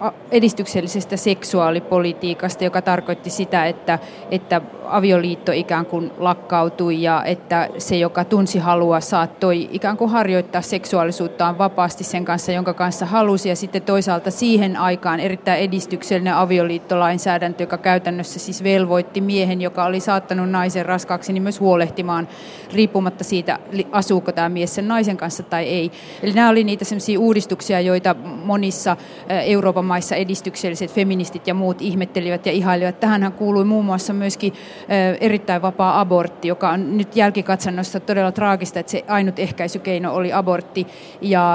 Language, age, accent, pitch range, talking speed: Finnish, 30-49, native, 175-195 Hz, 140 wpm